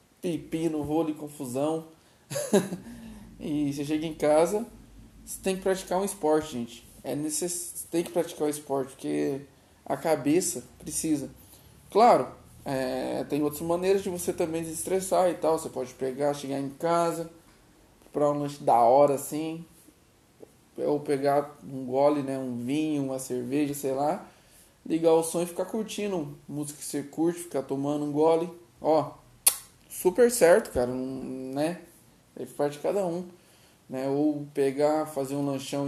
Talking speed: 155 wpm